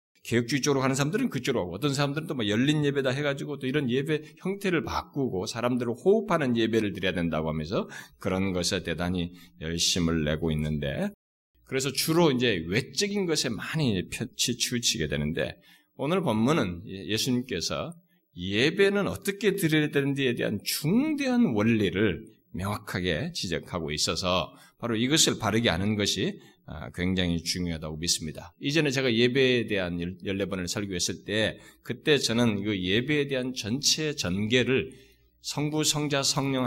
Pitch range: 90-140 Hz